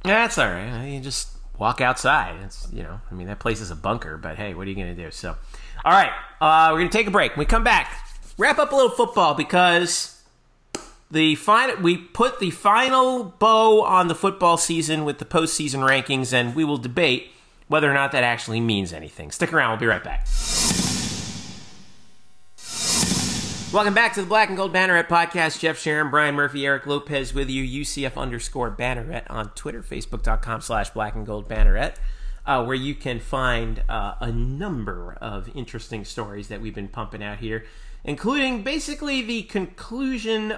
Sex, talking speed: male, 185 wpm